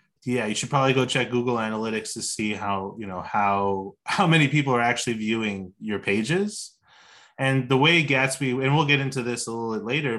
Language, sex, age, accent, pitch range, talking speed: English, male, 20-39, American, 110-140 Hz, 205 wpm